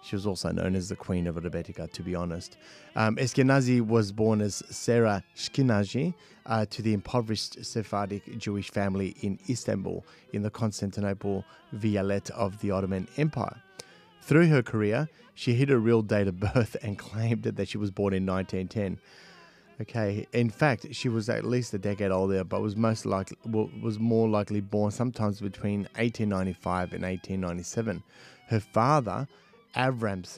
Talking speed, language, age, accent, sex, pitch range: 160 wpm, English, 30-49, Australian, male, 100-120 Hz